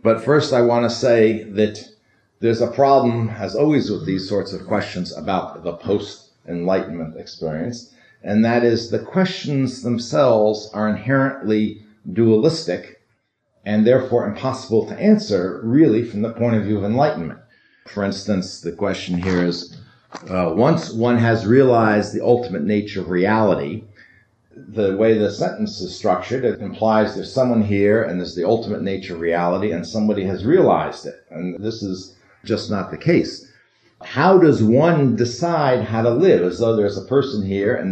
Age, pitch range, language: 50-69, 100-120 Hz, English